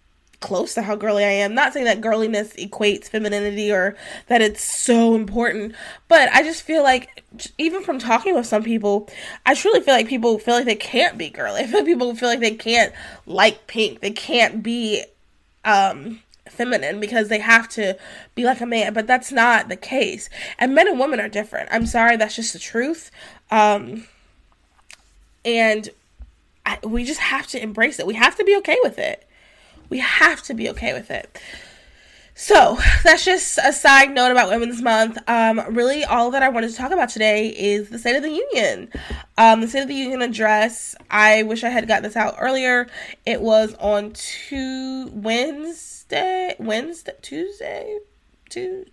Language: English